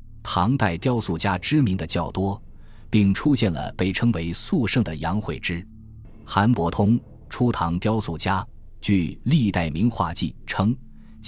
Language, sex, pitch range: Chinese, male, 85-115 Hz